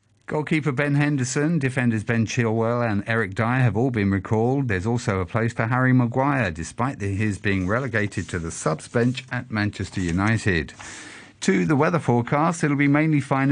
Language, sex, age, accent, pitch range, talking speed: English, male, 50-69, British, 105-135 Hz, 180 wpm